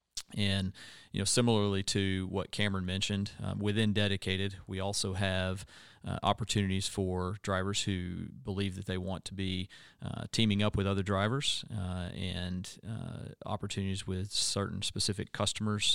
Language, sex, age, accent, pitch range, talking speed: English, male, 40-59, American, 95-105 Hz, 145 wpm